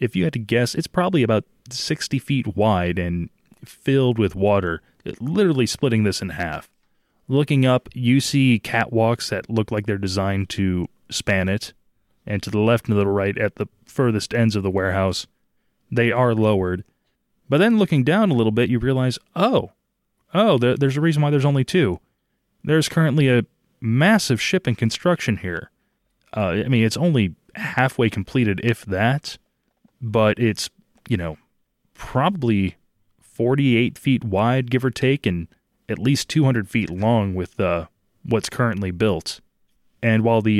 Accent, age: American, 20-39